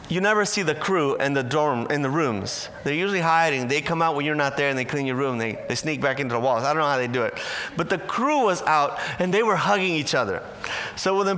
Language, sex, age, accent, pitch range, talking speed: English, male, 30-49, American, 135-180 Hz, 290 wpm